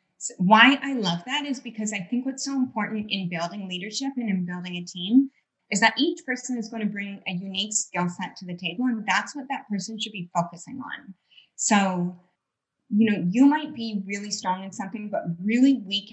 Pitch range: 180-235 Hz